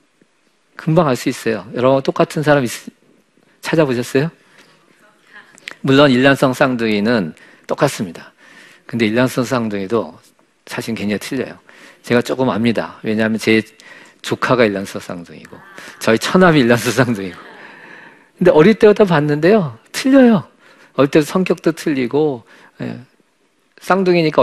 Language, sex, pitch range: Korean, male, 115-175 Hz